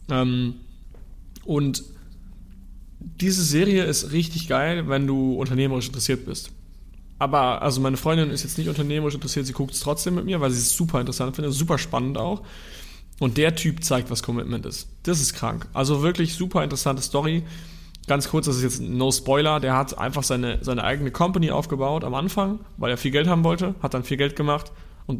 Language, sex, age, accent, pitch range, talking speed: German, male, 30-49, German, 120-155 Hz, 190 wpm